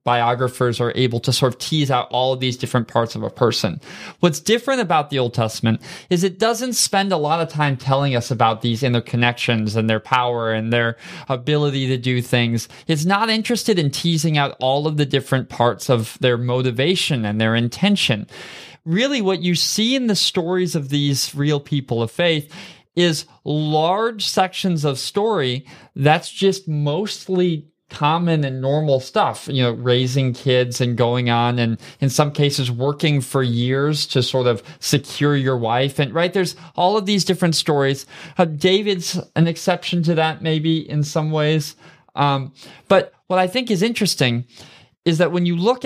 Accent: American